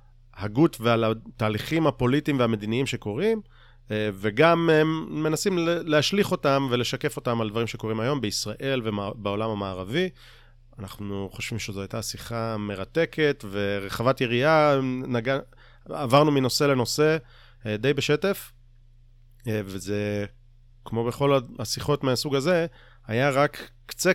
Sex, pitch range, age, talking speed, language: male, 110-135 Hz, 30-49, 105 wpm, Hebrew